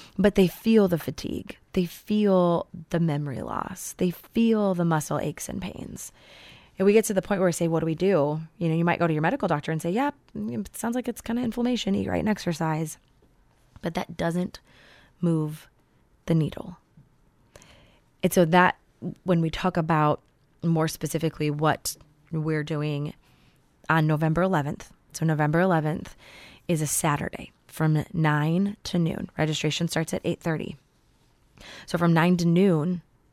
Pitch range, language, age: 155-195 Hz, English, 20-39